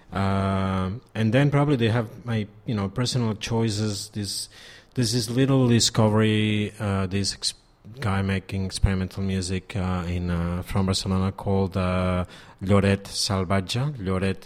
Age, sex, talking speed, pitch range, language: 30-49, male, 135 wpm, 95-110 Hz, English